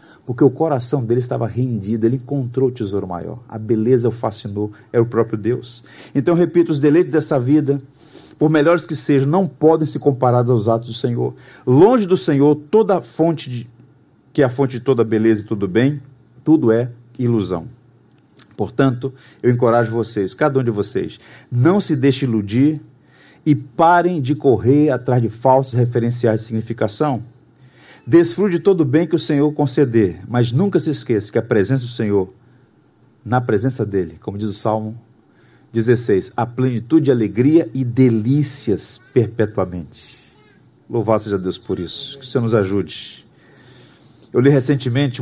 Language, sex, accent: Portuguese, male, Brazilian